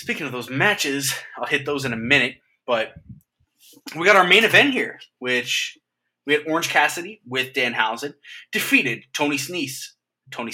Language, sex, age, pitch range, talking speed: English, male, 20-39, 125-165 Hz, 165 wpm